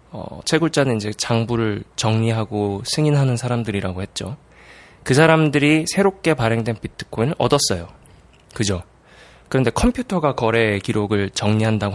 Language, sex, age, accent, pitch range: Korean, male, 20-39, native, 105-145 Hz